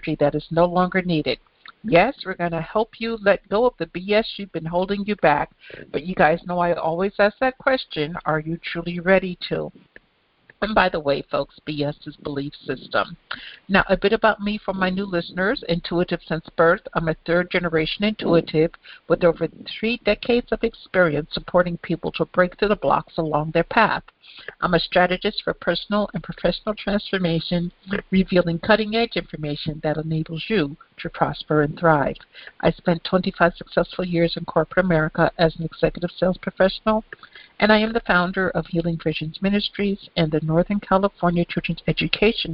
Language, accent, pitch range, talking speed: English, American, 160-200 Hz, 175 wpm